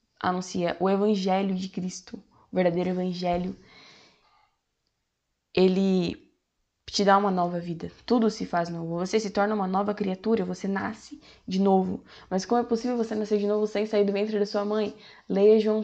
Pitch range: 175-205 Hz